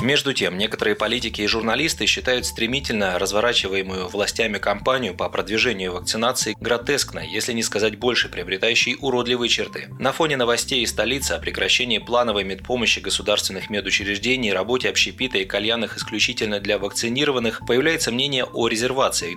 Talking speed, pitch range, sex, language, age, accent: 135 wpm, 100-120 Hz, male, Russian, 30-49, native